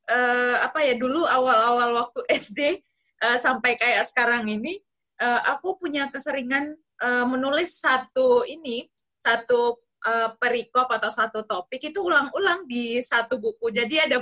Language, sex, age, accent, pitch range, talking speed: Indonesian, female, 20-39, native, 210-270 Hz, 140 wpm